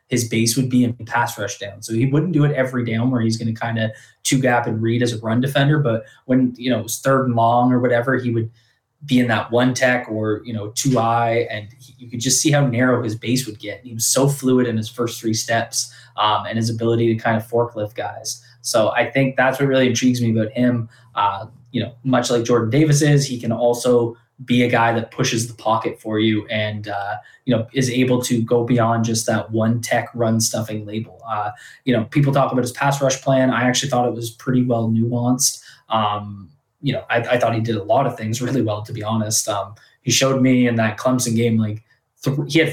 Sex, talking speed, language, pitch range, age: male, 245 wpm, English, 115-130 Hz, 20-39